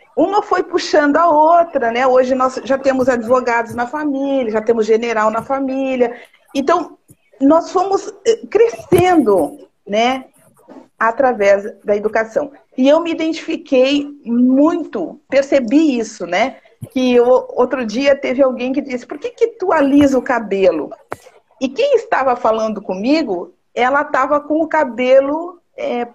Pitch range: 245-330 Hz